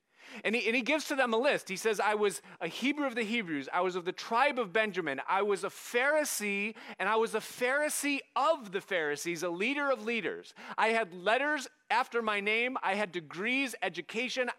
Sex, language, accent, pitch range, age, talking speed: male, English, American, 190-265 Hz, 30-49, 205 wpm